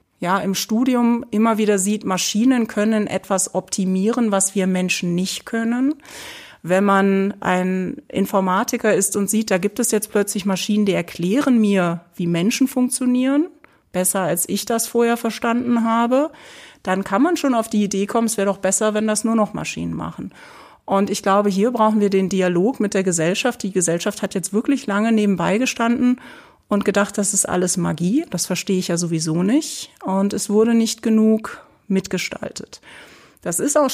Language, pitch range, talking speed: German, 190-230 Hz, 175 wpm